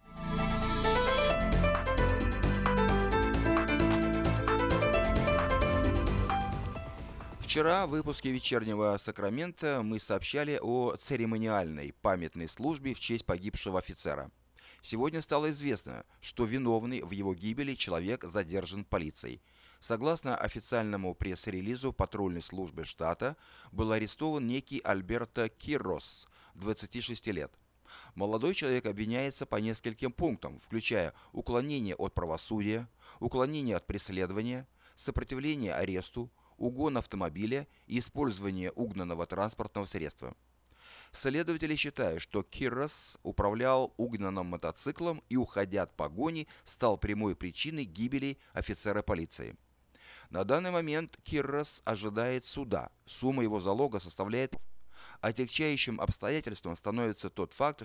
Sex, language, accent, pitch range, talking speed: male, Russian, native, 95-130 Hz, 95 wpm